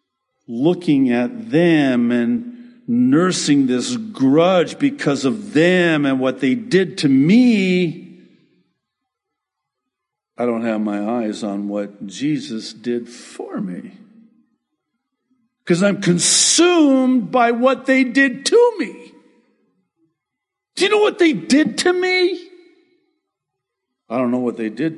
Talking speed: 120 wpm